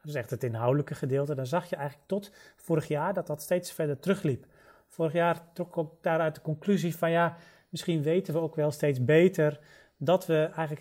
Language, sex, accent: Dutch, male, Dutch